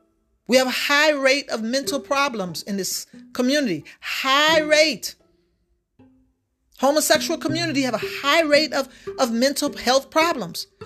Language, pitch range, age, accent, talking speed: English, 240-330 Hz, 40-59, American, 135 wpm